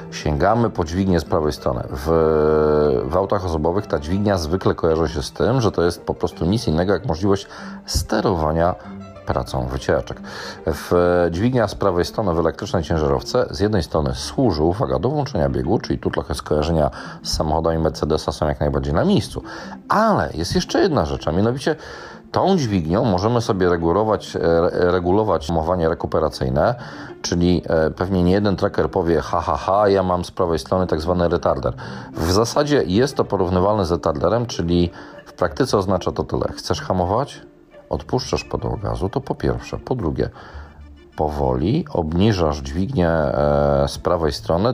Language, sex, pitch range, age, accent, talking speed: Polish, male, 75-95 Hz, 40-59, native, 155 wpm